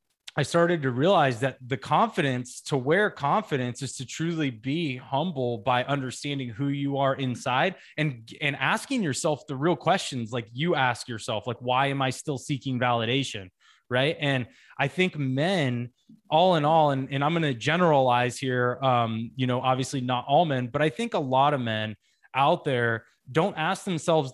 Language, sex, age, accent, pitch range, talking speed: English, male, 20-39, American, 130-160 Hz, 180 wpm